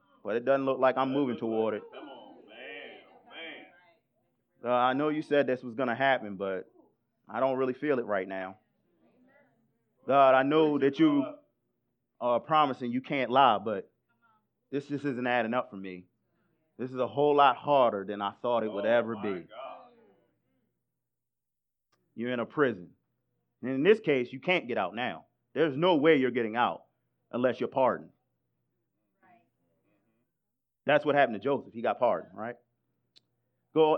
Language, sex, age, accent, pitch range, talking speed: English, male, 30-49, American, 110-145 Hz, 160 wpm